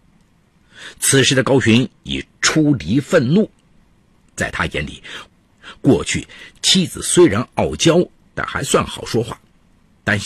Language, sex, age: Chinese, male, 50-69